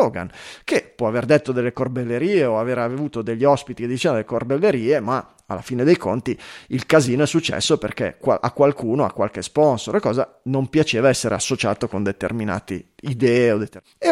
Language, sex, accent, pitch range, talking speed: Italian, male, native, 110-160 Hz, 165 wpm